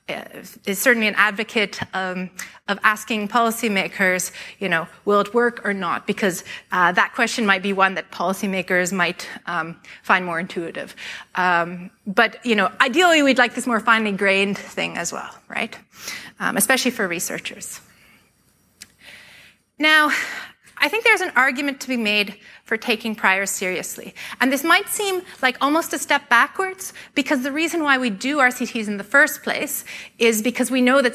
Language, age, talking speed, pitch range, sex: English, 30-49, 165 wpm, 205-270 Hz, female